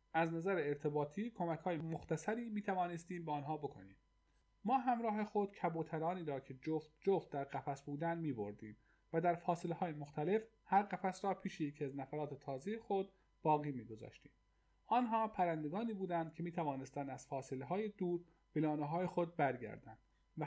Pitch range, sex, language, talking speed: 145-190 Hz, male, Persian, 145 wpm